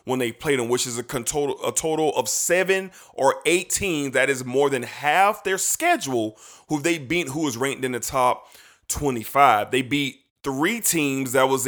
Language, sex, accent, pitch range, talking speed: English, male, American, 130-160 Hz, 185 wpm